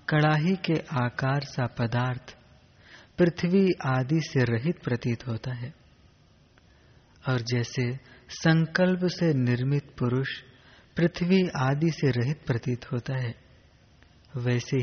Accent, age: native, 30-49